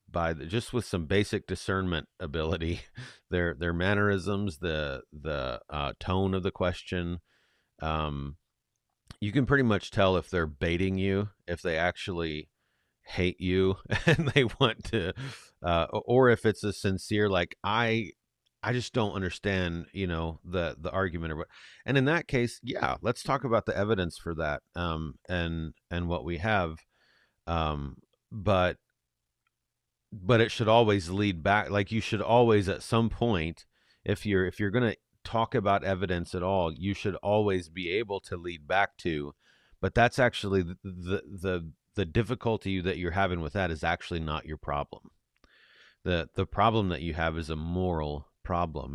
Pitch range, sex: 85-105 Hz, male